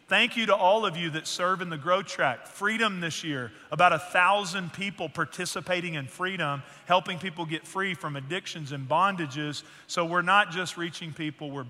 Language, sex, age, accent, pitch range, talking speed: English, male, 40-59, American, 150-180 Hz, 190 wpm